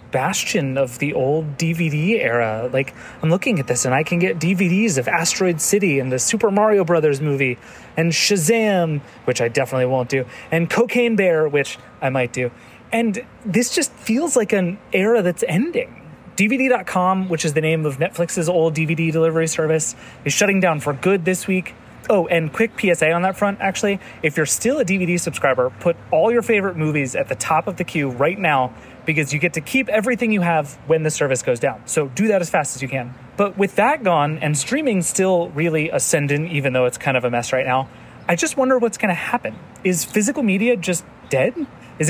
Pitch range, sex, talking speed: 145-205 Hz, male, 205 wpm